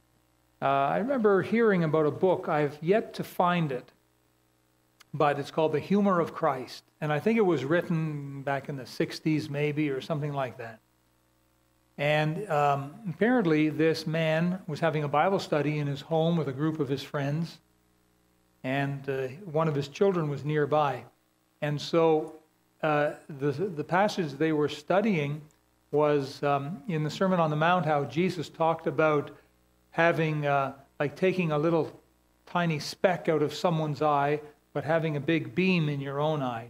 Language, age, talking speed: English, 60-79, 170 wpm